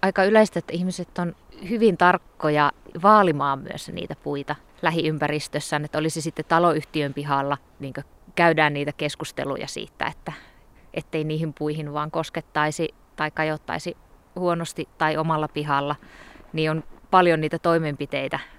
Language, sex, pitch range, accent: Finnish, female, 150-170 Hz, native